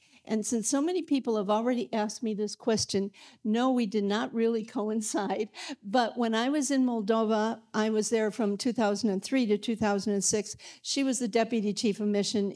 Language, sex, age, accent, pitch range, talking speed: English, female, 50-69, American, 200-235 Hz, 175 wpm